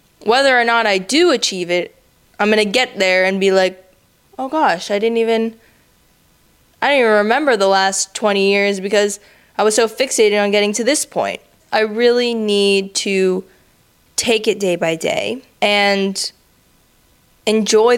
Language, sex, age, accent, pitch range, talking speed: English, female, 10-29, American, 185-225 Hz, 165 wpm